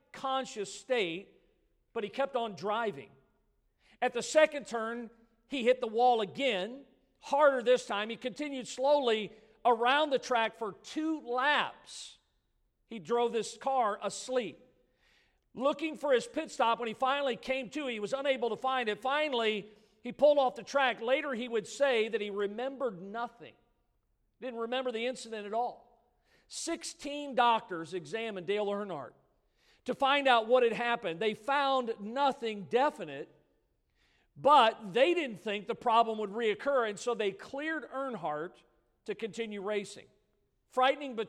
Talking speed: 150 wpm